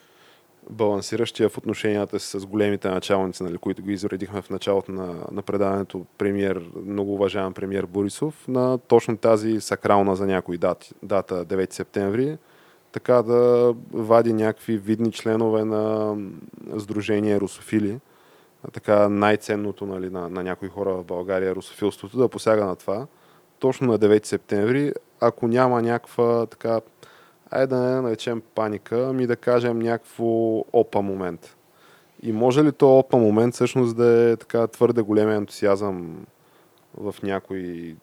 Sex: male